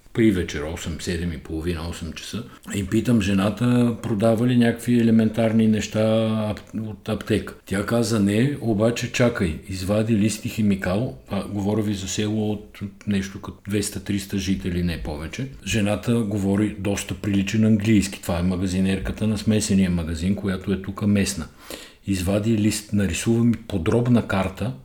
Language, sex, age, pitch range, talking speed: Bulgarian, male, 50-69, 95-115 Hz, 145 wpm